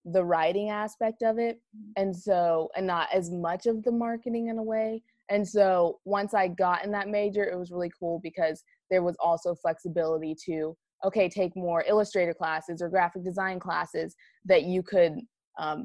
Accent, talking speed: American, 180 wpm